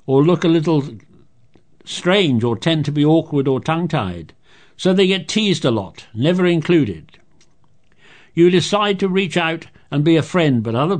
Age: 60-79